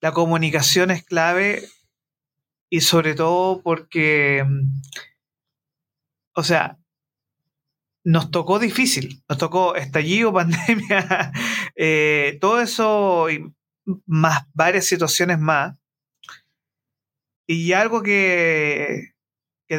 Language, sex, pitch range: Spanish, male, 145-175 Hz